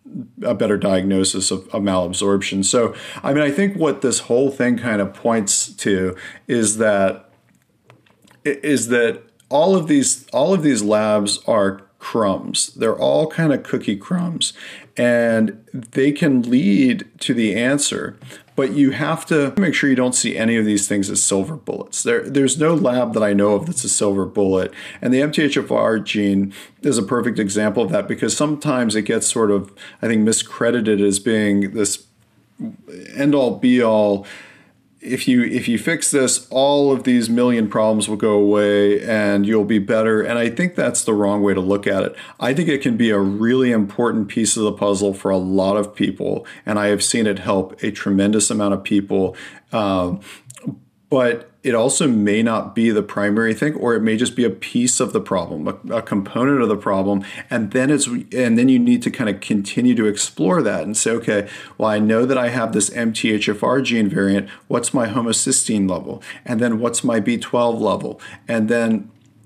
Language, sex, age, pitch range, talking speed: English, male, 40-59, 100-130 Hz, 190 wpm